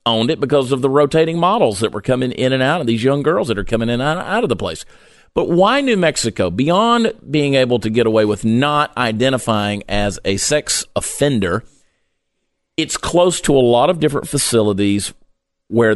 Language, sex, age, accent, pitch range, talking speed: English, male, 40-59, American, 105-140 Hz, 195 wpm